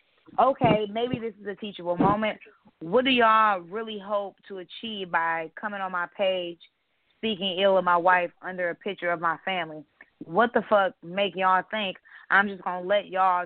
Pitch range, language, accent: 175-210 Hz, English, American